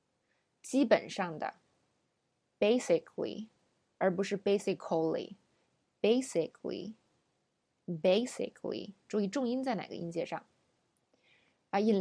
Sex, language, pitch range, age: female, Chinese, 180-230 Hz, 20-39